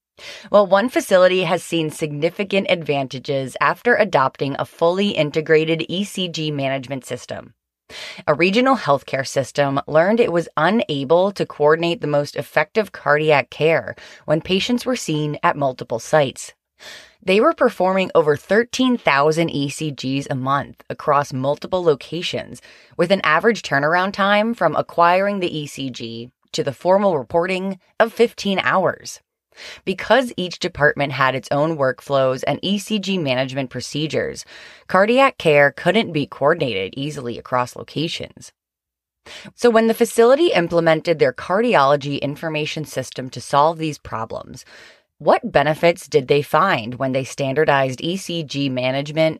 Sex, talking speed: female, 130 wpm